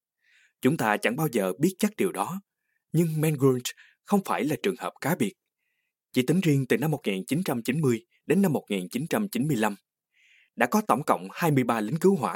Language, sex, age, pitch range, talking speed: Vietnamese, male, 20-39, 120-195 Hz, 170 wpm